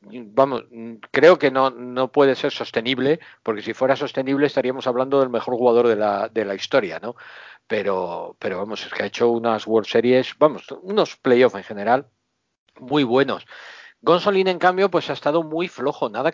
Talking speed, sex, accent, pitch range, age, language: 180 wpm, male, Spanish, 110-140 Hz, 50-69, Spanish